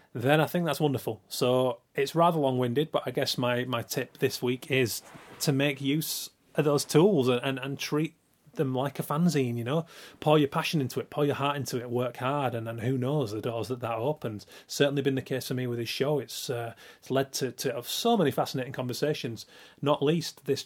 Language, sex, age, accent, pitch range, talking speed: English, male, 30-49, British, 120-145 Hz, 225 wpm